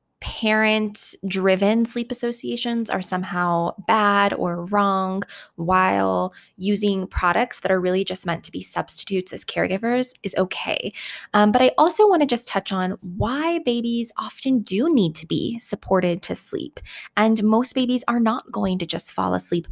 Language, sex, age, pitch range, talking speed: English, female, 20-39, 185-230 Hz, 160 wpm